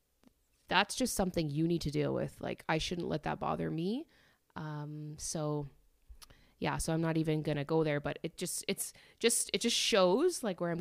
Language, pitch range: English, 155-195 Hz